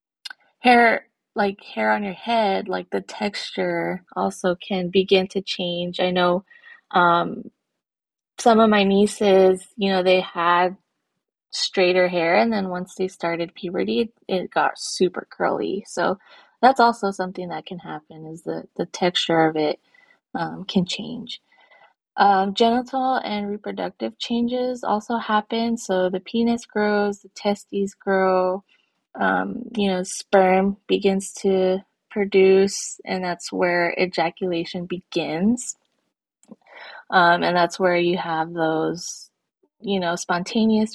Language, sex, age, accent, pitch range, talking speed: English, female, 20-39, American, 180-205 Hz, 130 wpm